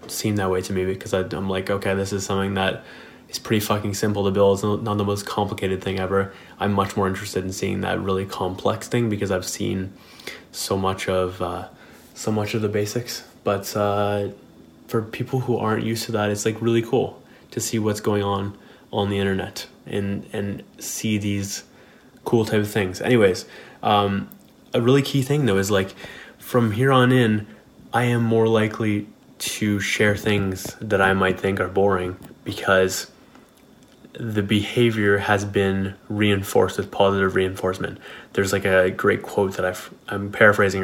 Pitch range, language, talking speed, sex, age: 95-110 Hz, English, 180 wpm, male, 20-39